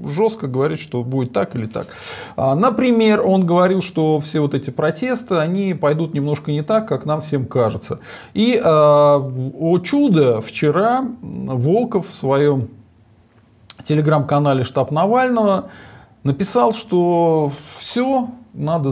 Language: Russian